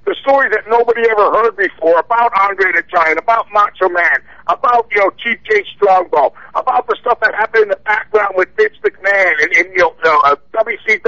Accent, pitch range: American, 200-255 Hz